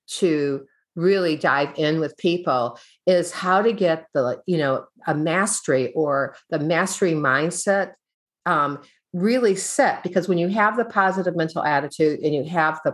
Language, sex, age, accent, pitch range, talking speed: English, female, 50-69, American, 155-195 Hz, 160 wpm